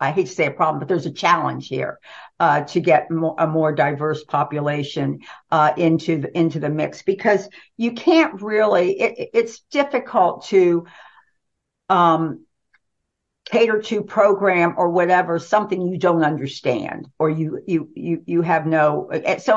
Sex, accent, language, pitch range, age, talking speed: female, American, English, 155-205 Hz, 50-69, 155 wpm